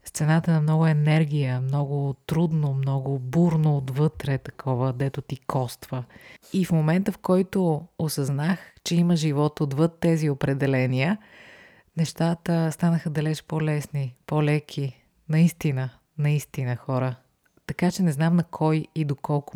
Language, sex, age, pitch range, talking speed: Bulgarian, female, 30-49, 135-160 Hz, 130 wpm